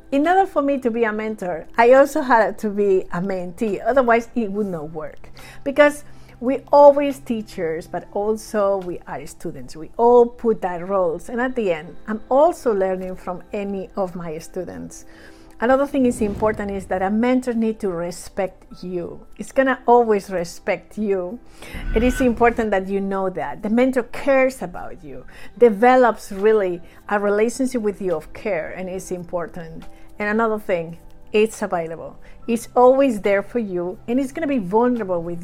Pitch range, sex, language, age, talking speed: 190-250 Hz, female, English, 50-69, 175 wpm